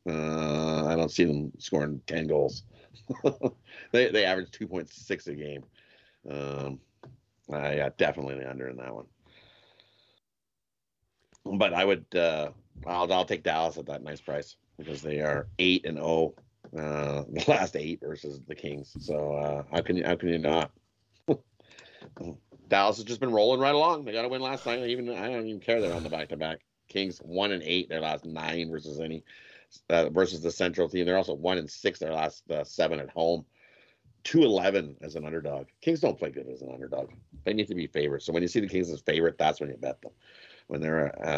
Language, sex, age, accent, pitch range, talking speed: English, male, 30-49, American, 75-100 Hz, 200 wpm